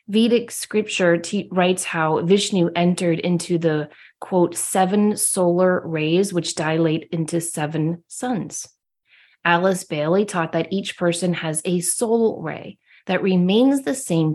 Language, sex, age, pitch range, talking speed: English, female, 30-49, 165-220 Hz, 130 wpm